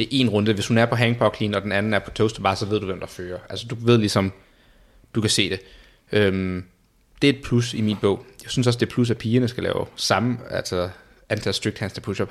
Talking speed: 255 wpm